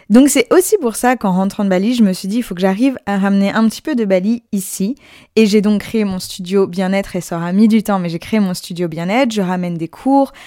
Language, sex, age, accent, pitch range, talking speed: French, female, 20-39, French, 185-230 Hz, 275 wpm